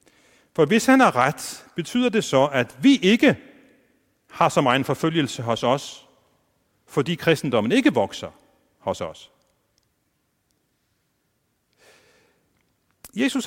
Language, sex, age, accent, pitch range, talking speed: Danish, male, 40-59, native, 130-200 Hz, 105 wpm